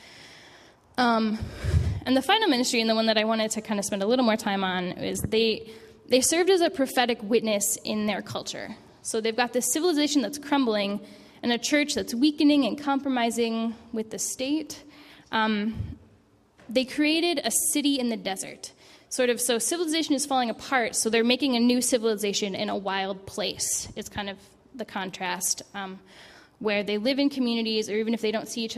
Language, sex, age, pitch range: English, female, 10-29, 200-250 Hz